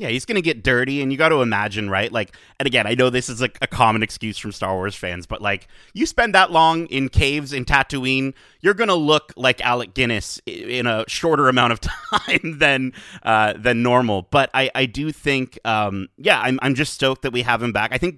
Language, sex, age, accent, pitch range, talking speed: English, male, 30-49, American, 105-135 Hz, 240 wpm